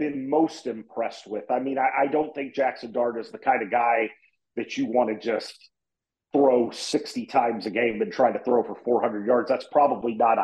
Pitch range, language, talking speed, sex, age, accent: 115-145 Hz, English, 215 wpm, male, 40-59, American